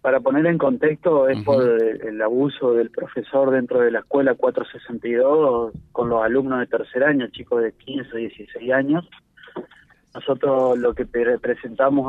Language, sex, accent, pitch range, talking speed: Spanish, male, Argentinian, 125-145 Hz, 150 wpm